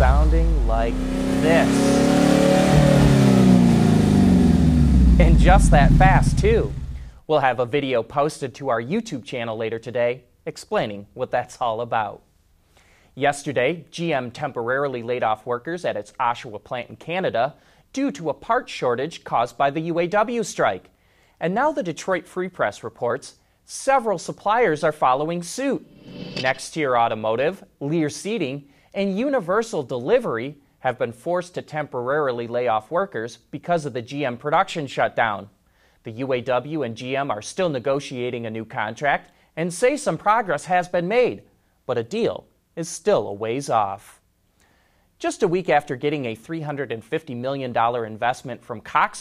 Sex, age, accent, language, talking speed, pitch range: male, 30-49, American, English, 140 wpm, 115-170 Hz